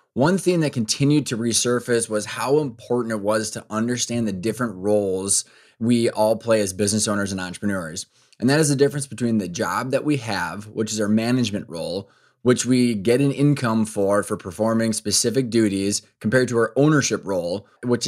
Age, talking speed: 20-39, 185 wpm